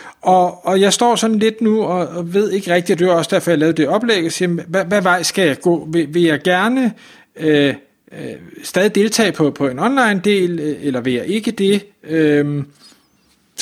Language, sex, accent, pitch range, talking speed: Danish, male, native, 150-195 Hz, 205 wpm